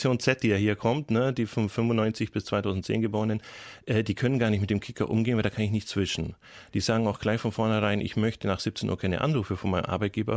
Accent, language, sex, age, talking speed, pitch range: German, German, male, 30-49, 245 wpm, 95-110 Hz